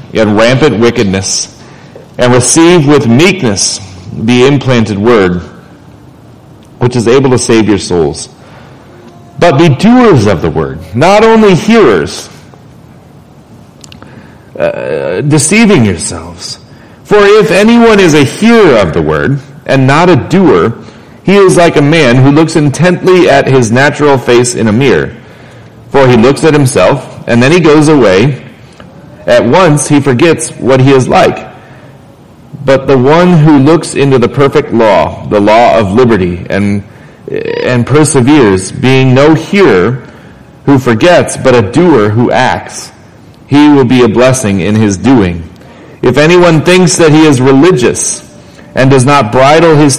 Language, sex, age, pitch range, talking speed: English, male, 40-59, 115-160 Hz, 145 wpm